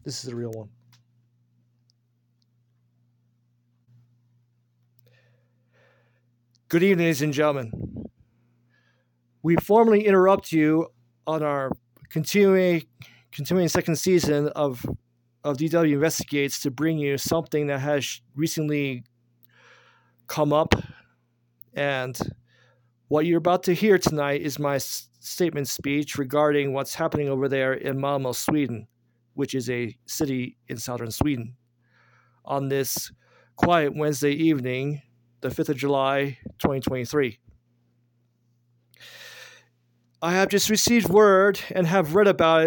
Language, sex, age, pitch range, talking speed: English, male, 40-59, 120-160 Hz, 110 wpm